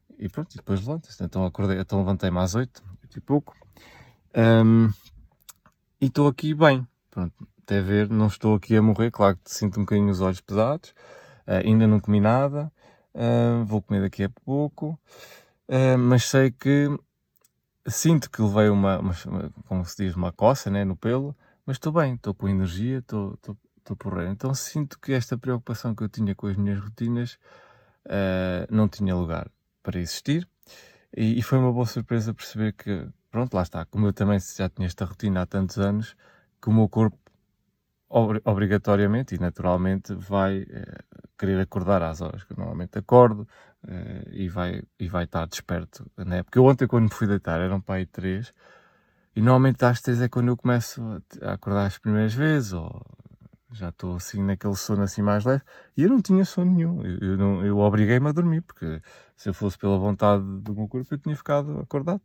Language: Portuguese